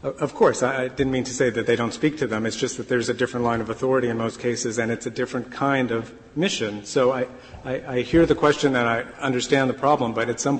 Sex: male